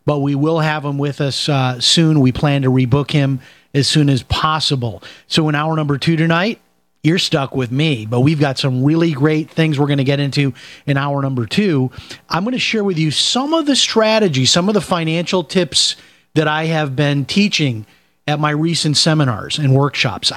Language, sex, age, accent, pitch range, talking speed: English, male, 30-49, American, 135-160 Hz, 205 wpm